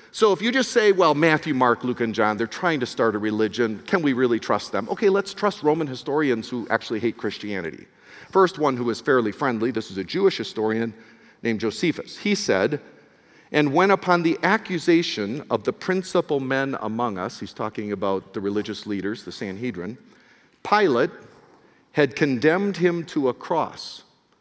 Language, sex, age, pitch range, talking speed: English, male, 50-69, 115-180 Hz, 175 wpm